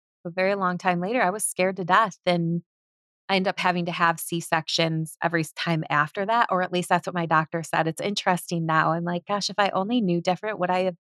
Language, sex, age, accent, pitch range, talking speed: English, female, 20-39, American, 165-190 Hz, 245 wpm